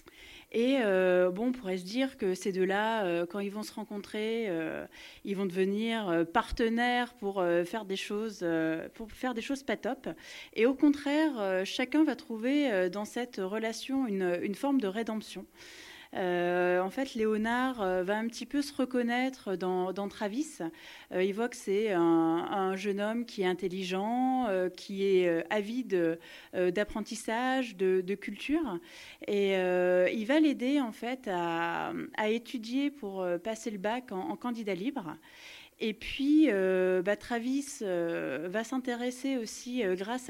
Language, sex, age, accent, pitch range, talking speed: French, female, 30-49, French, 190-250 Hz, 165 wpm